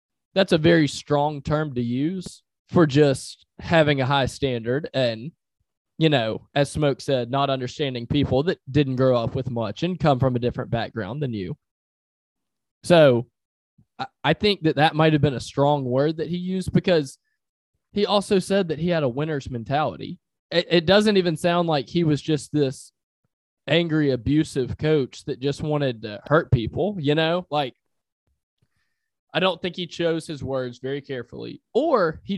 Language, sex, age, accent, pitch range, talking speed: English, male, 20-39, American, 125-160 Hz, 170 wpm